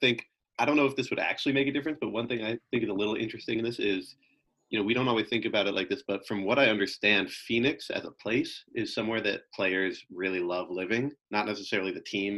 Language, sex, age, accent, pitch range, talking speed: English, male, 30-49, American, 95-120 Hz, 255 wpm